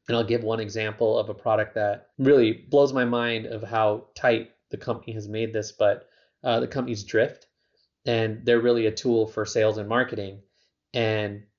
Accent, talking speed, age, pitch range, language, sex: American, 185 wpm, 30-49, 110-125 Hz, English, male